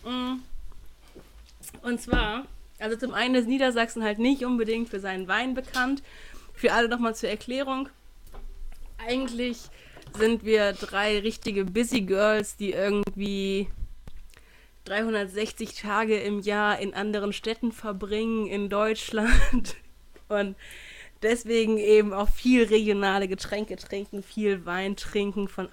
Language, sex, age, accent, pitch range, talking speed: German, female, 20-39, German, 195-235 Hz, 120 wpm